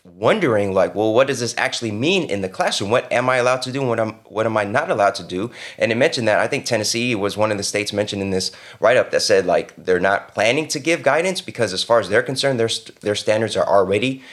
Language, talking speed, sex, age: English, 265 wpm, male, 20-39